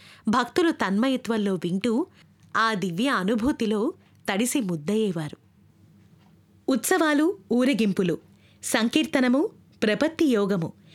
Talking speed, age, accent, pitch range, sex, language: 70 wpm, 20-39, native, 205-285 Hz, female, Telugu